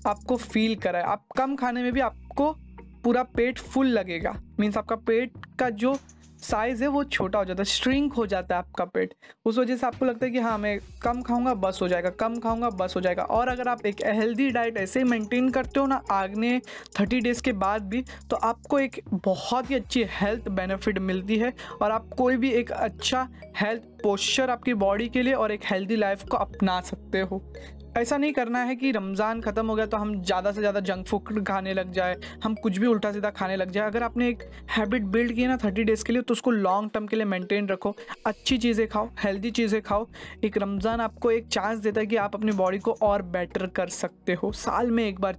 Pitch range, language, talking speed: 195-240 Hz, Hindi, 225 wpm